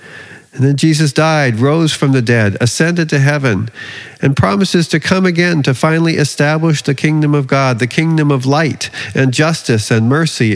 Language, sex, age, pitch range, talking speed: English, male, 50-69, 120-155 Hz, 175 wpm